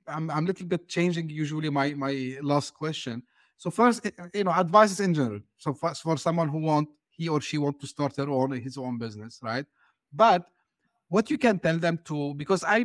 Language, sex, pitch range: English, male, 140-175 Hz